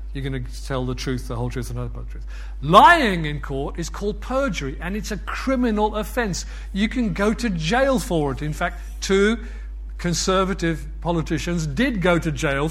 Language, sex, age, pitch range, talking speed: English, male, 50-69, 130-220 Hz, 190 wpm